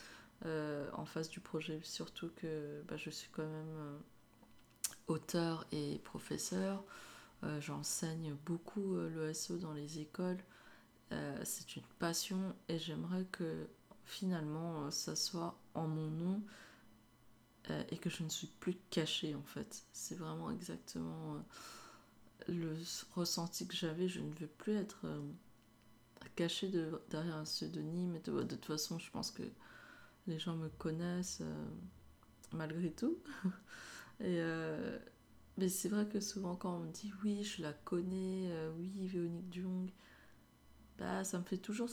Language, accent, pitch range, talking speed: French, French, 155-185 Hz, 150 wpm